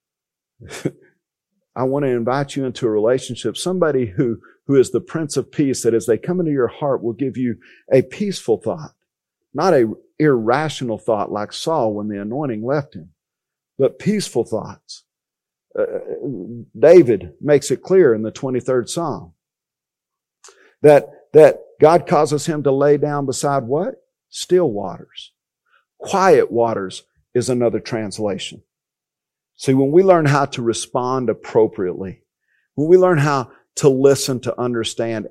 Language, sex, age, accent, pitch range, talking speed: English, male, 50-69, American, 115-155 Hz, 145 wpm